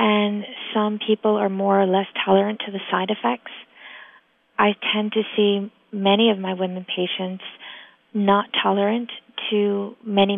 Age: 30-49